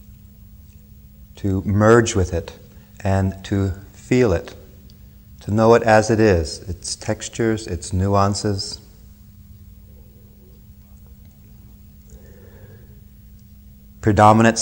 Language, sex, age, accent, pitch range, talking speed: English, male, 40-59, American, 95-110 Hz, 80 wpm